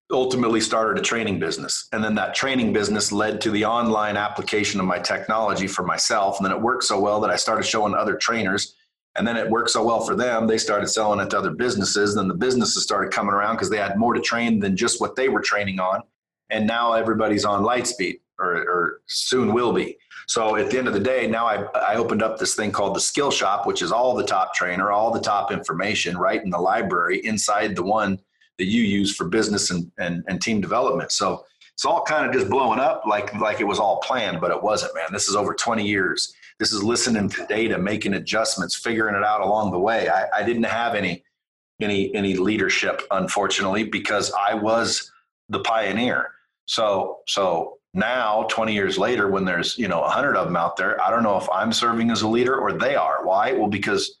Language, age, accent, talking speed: English, 30-49, American, 225 wpm